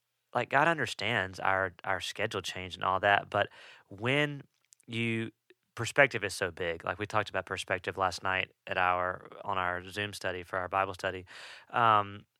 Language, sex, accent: English, male, American